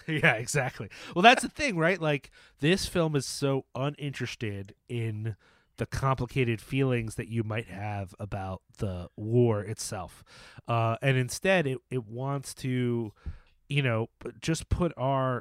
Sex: male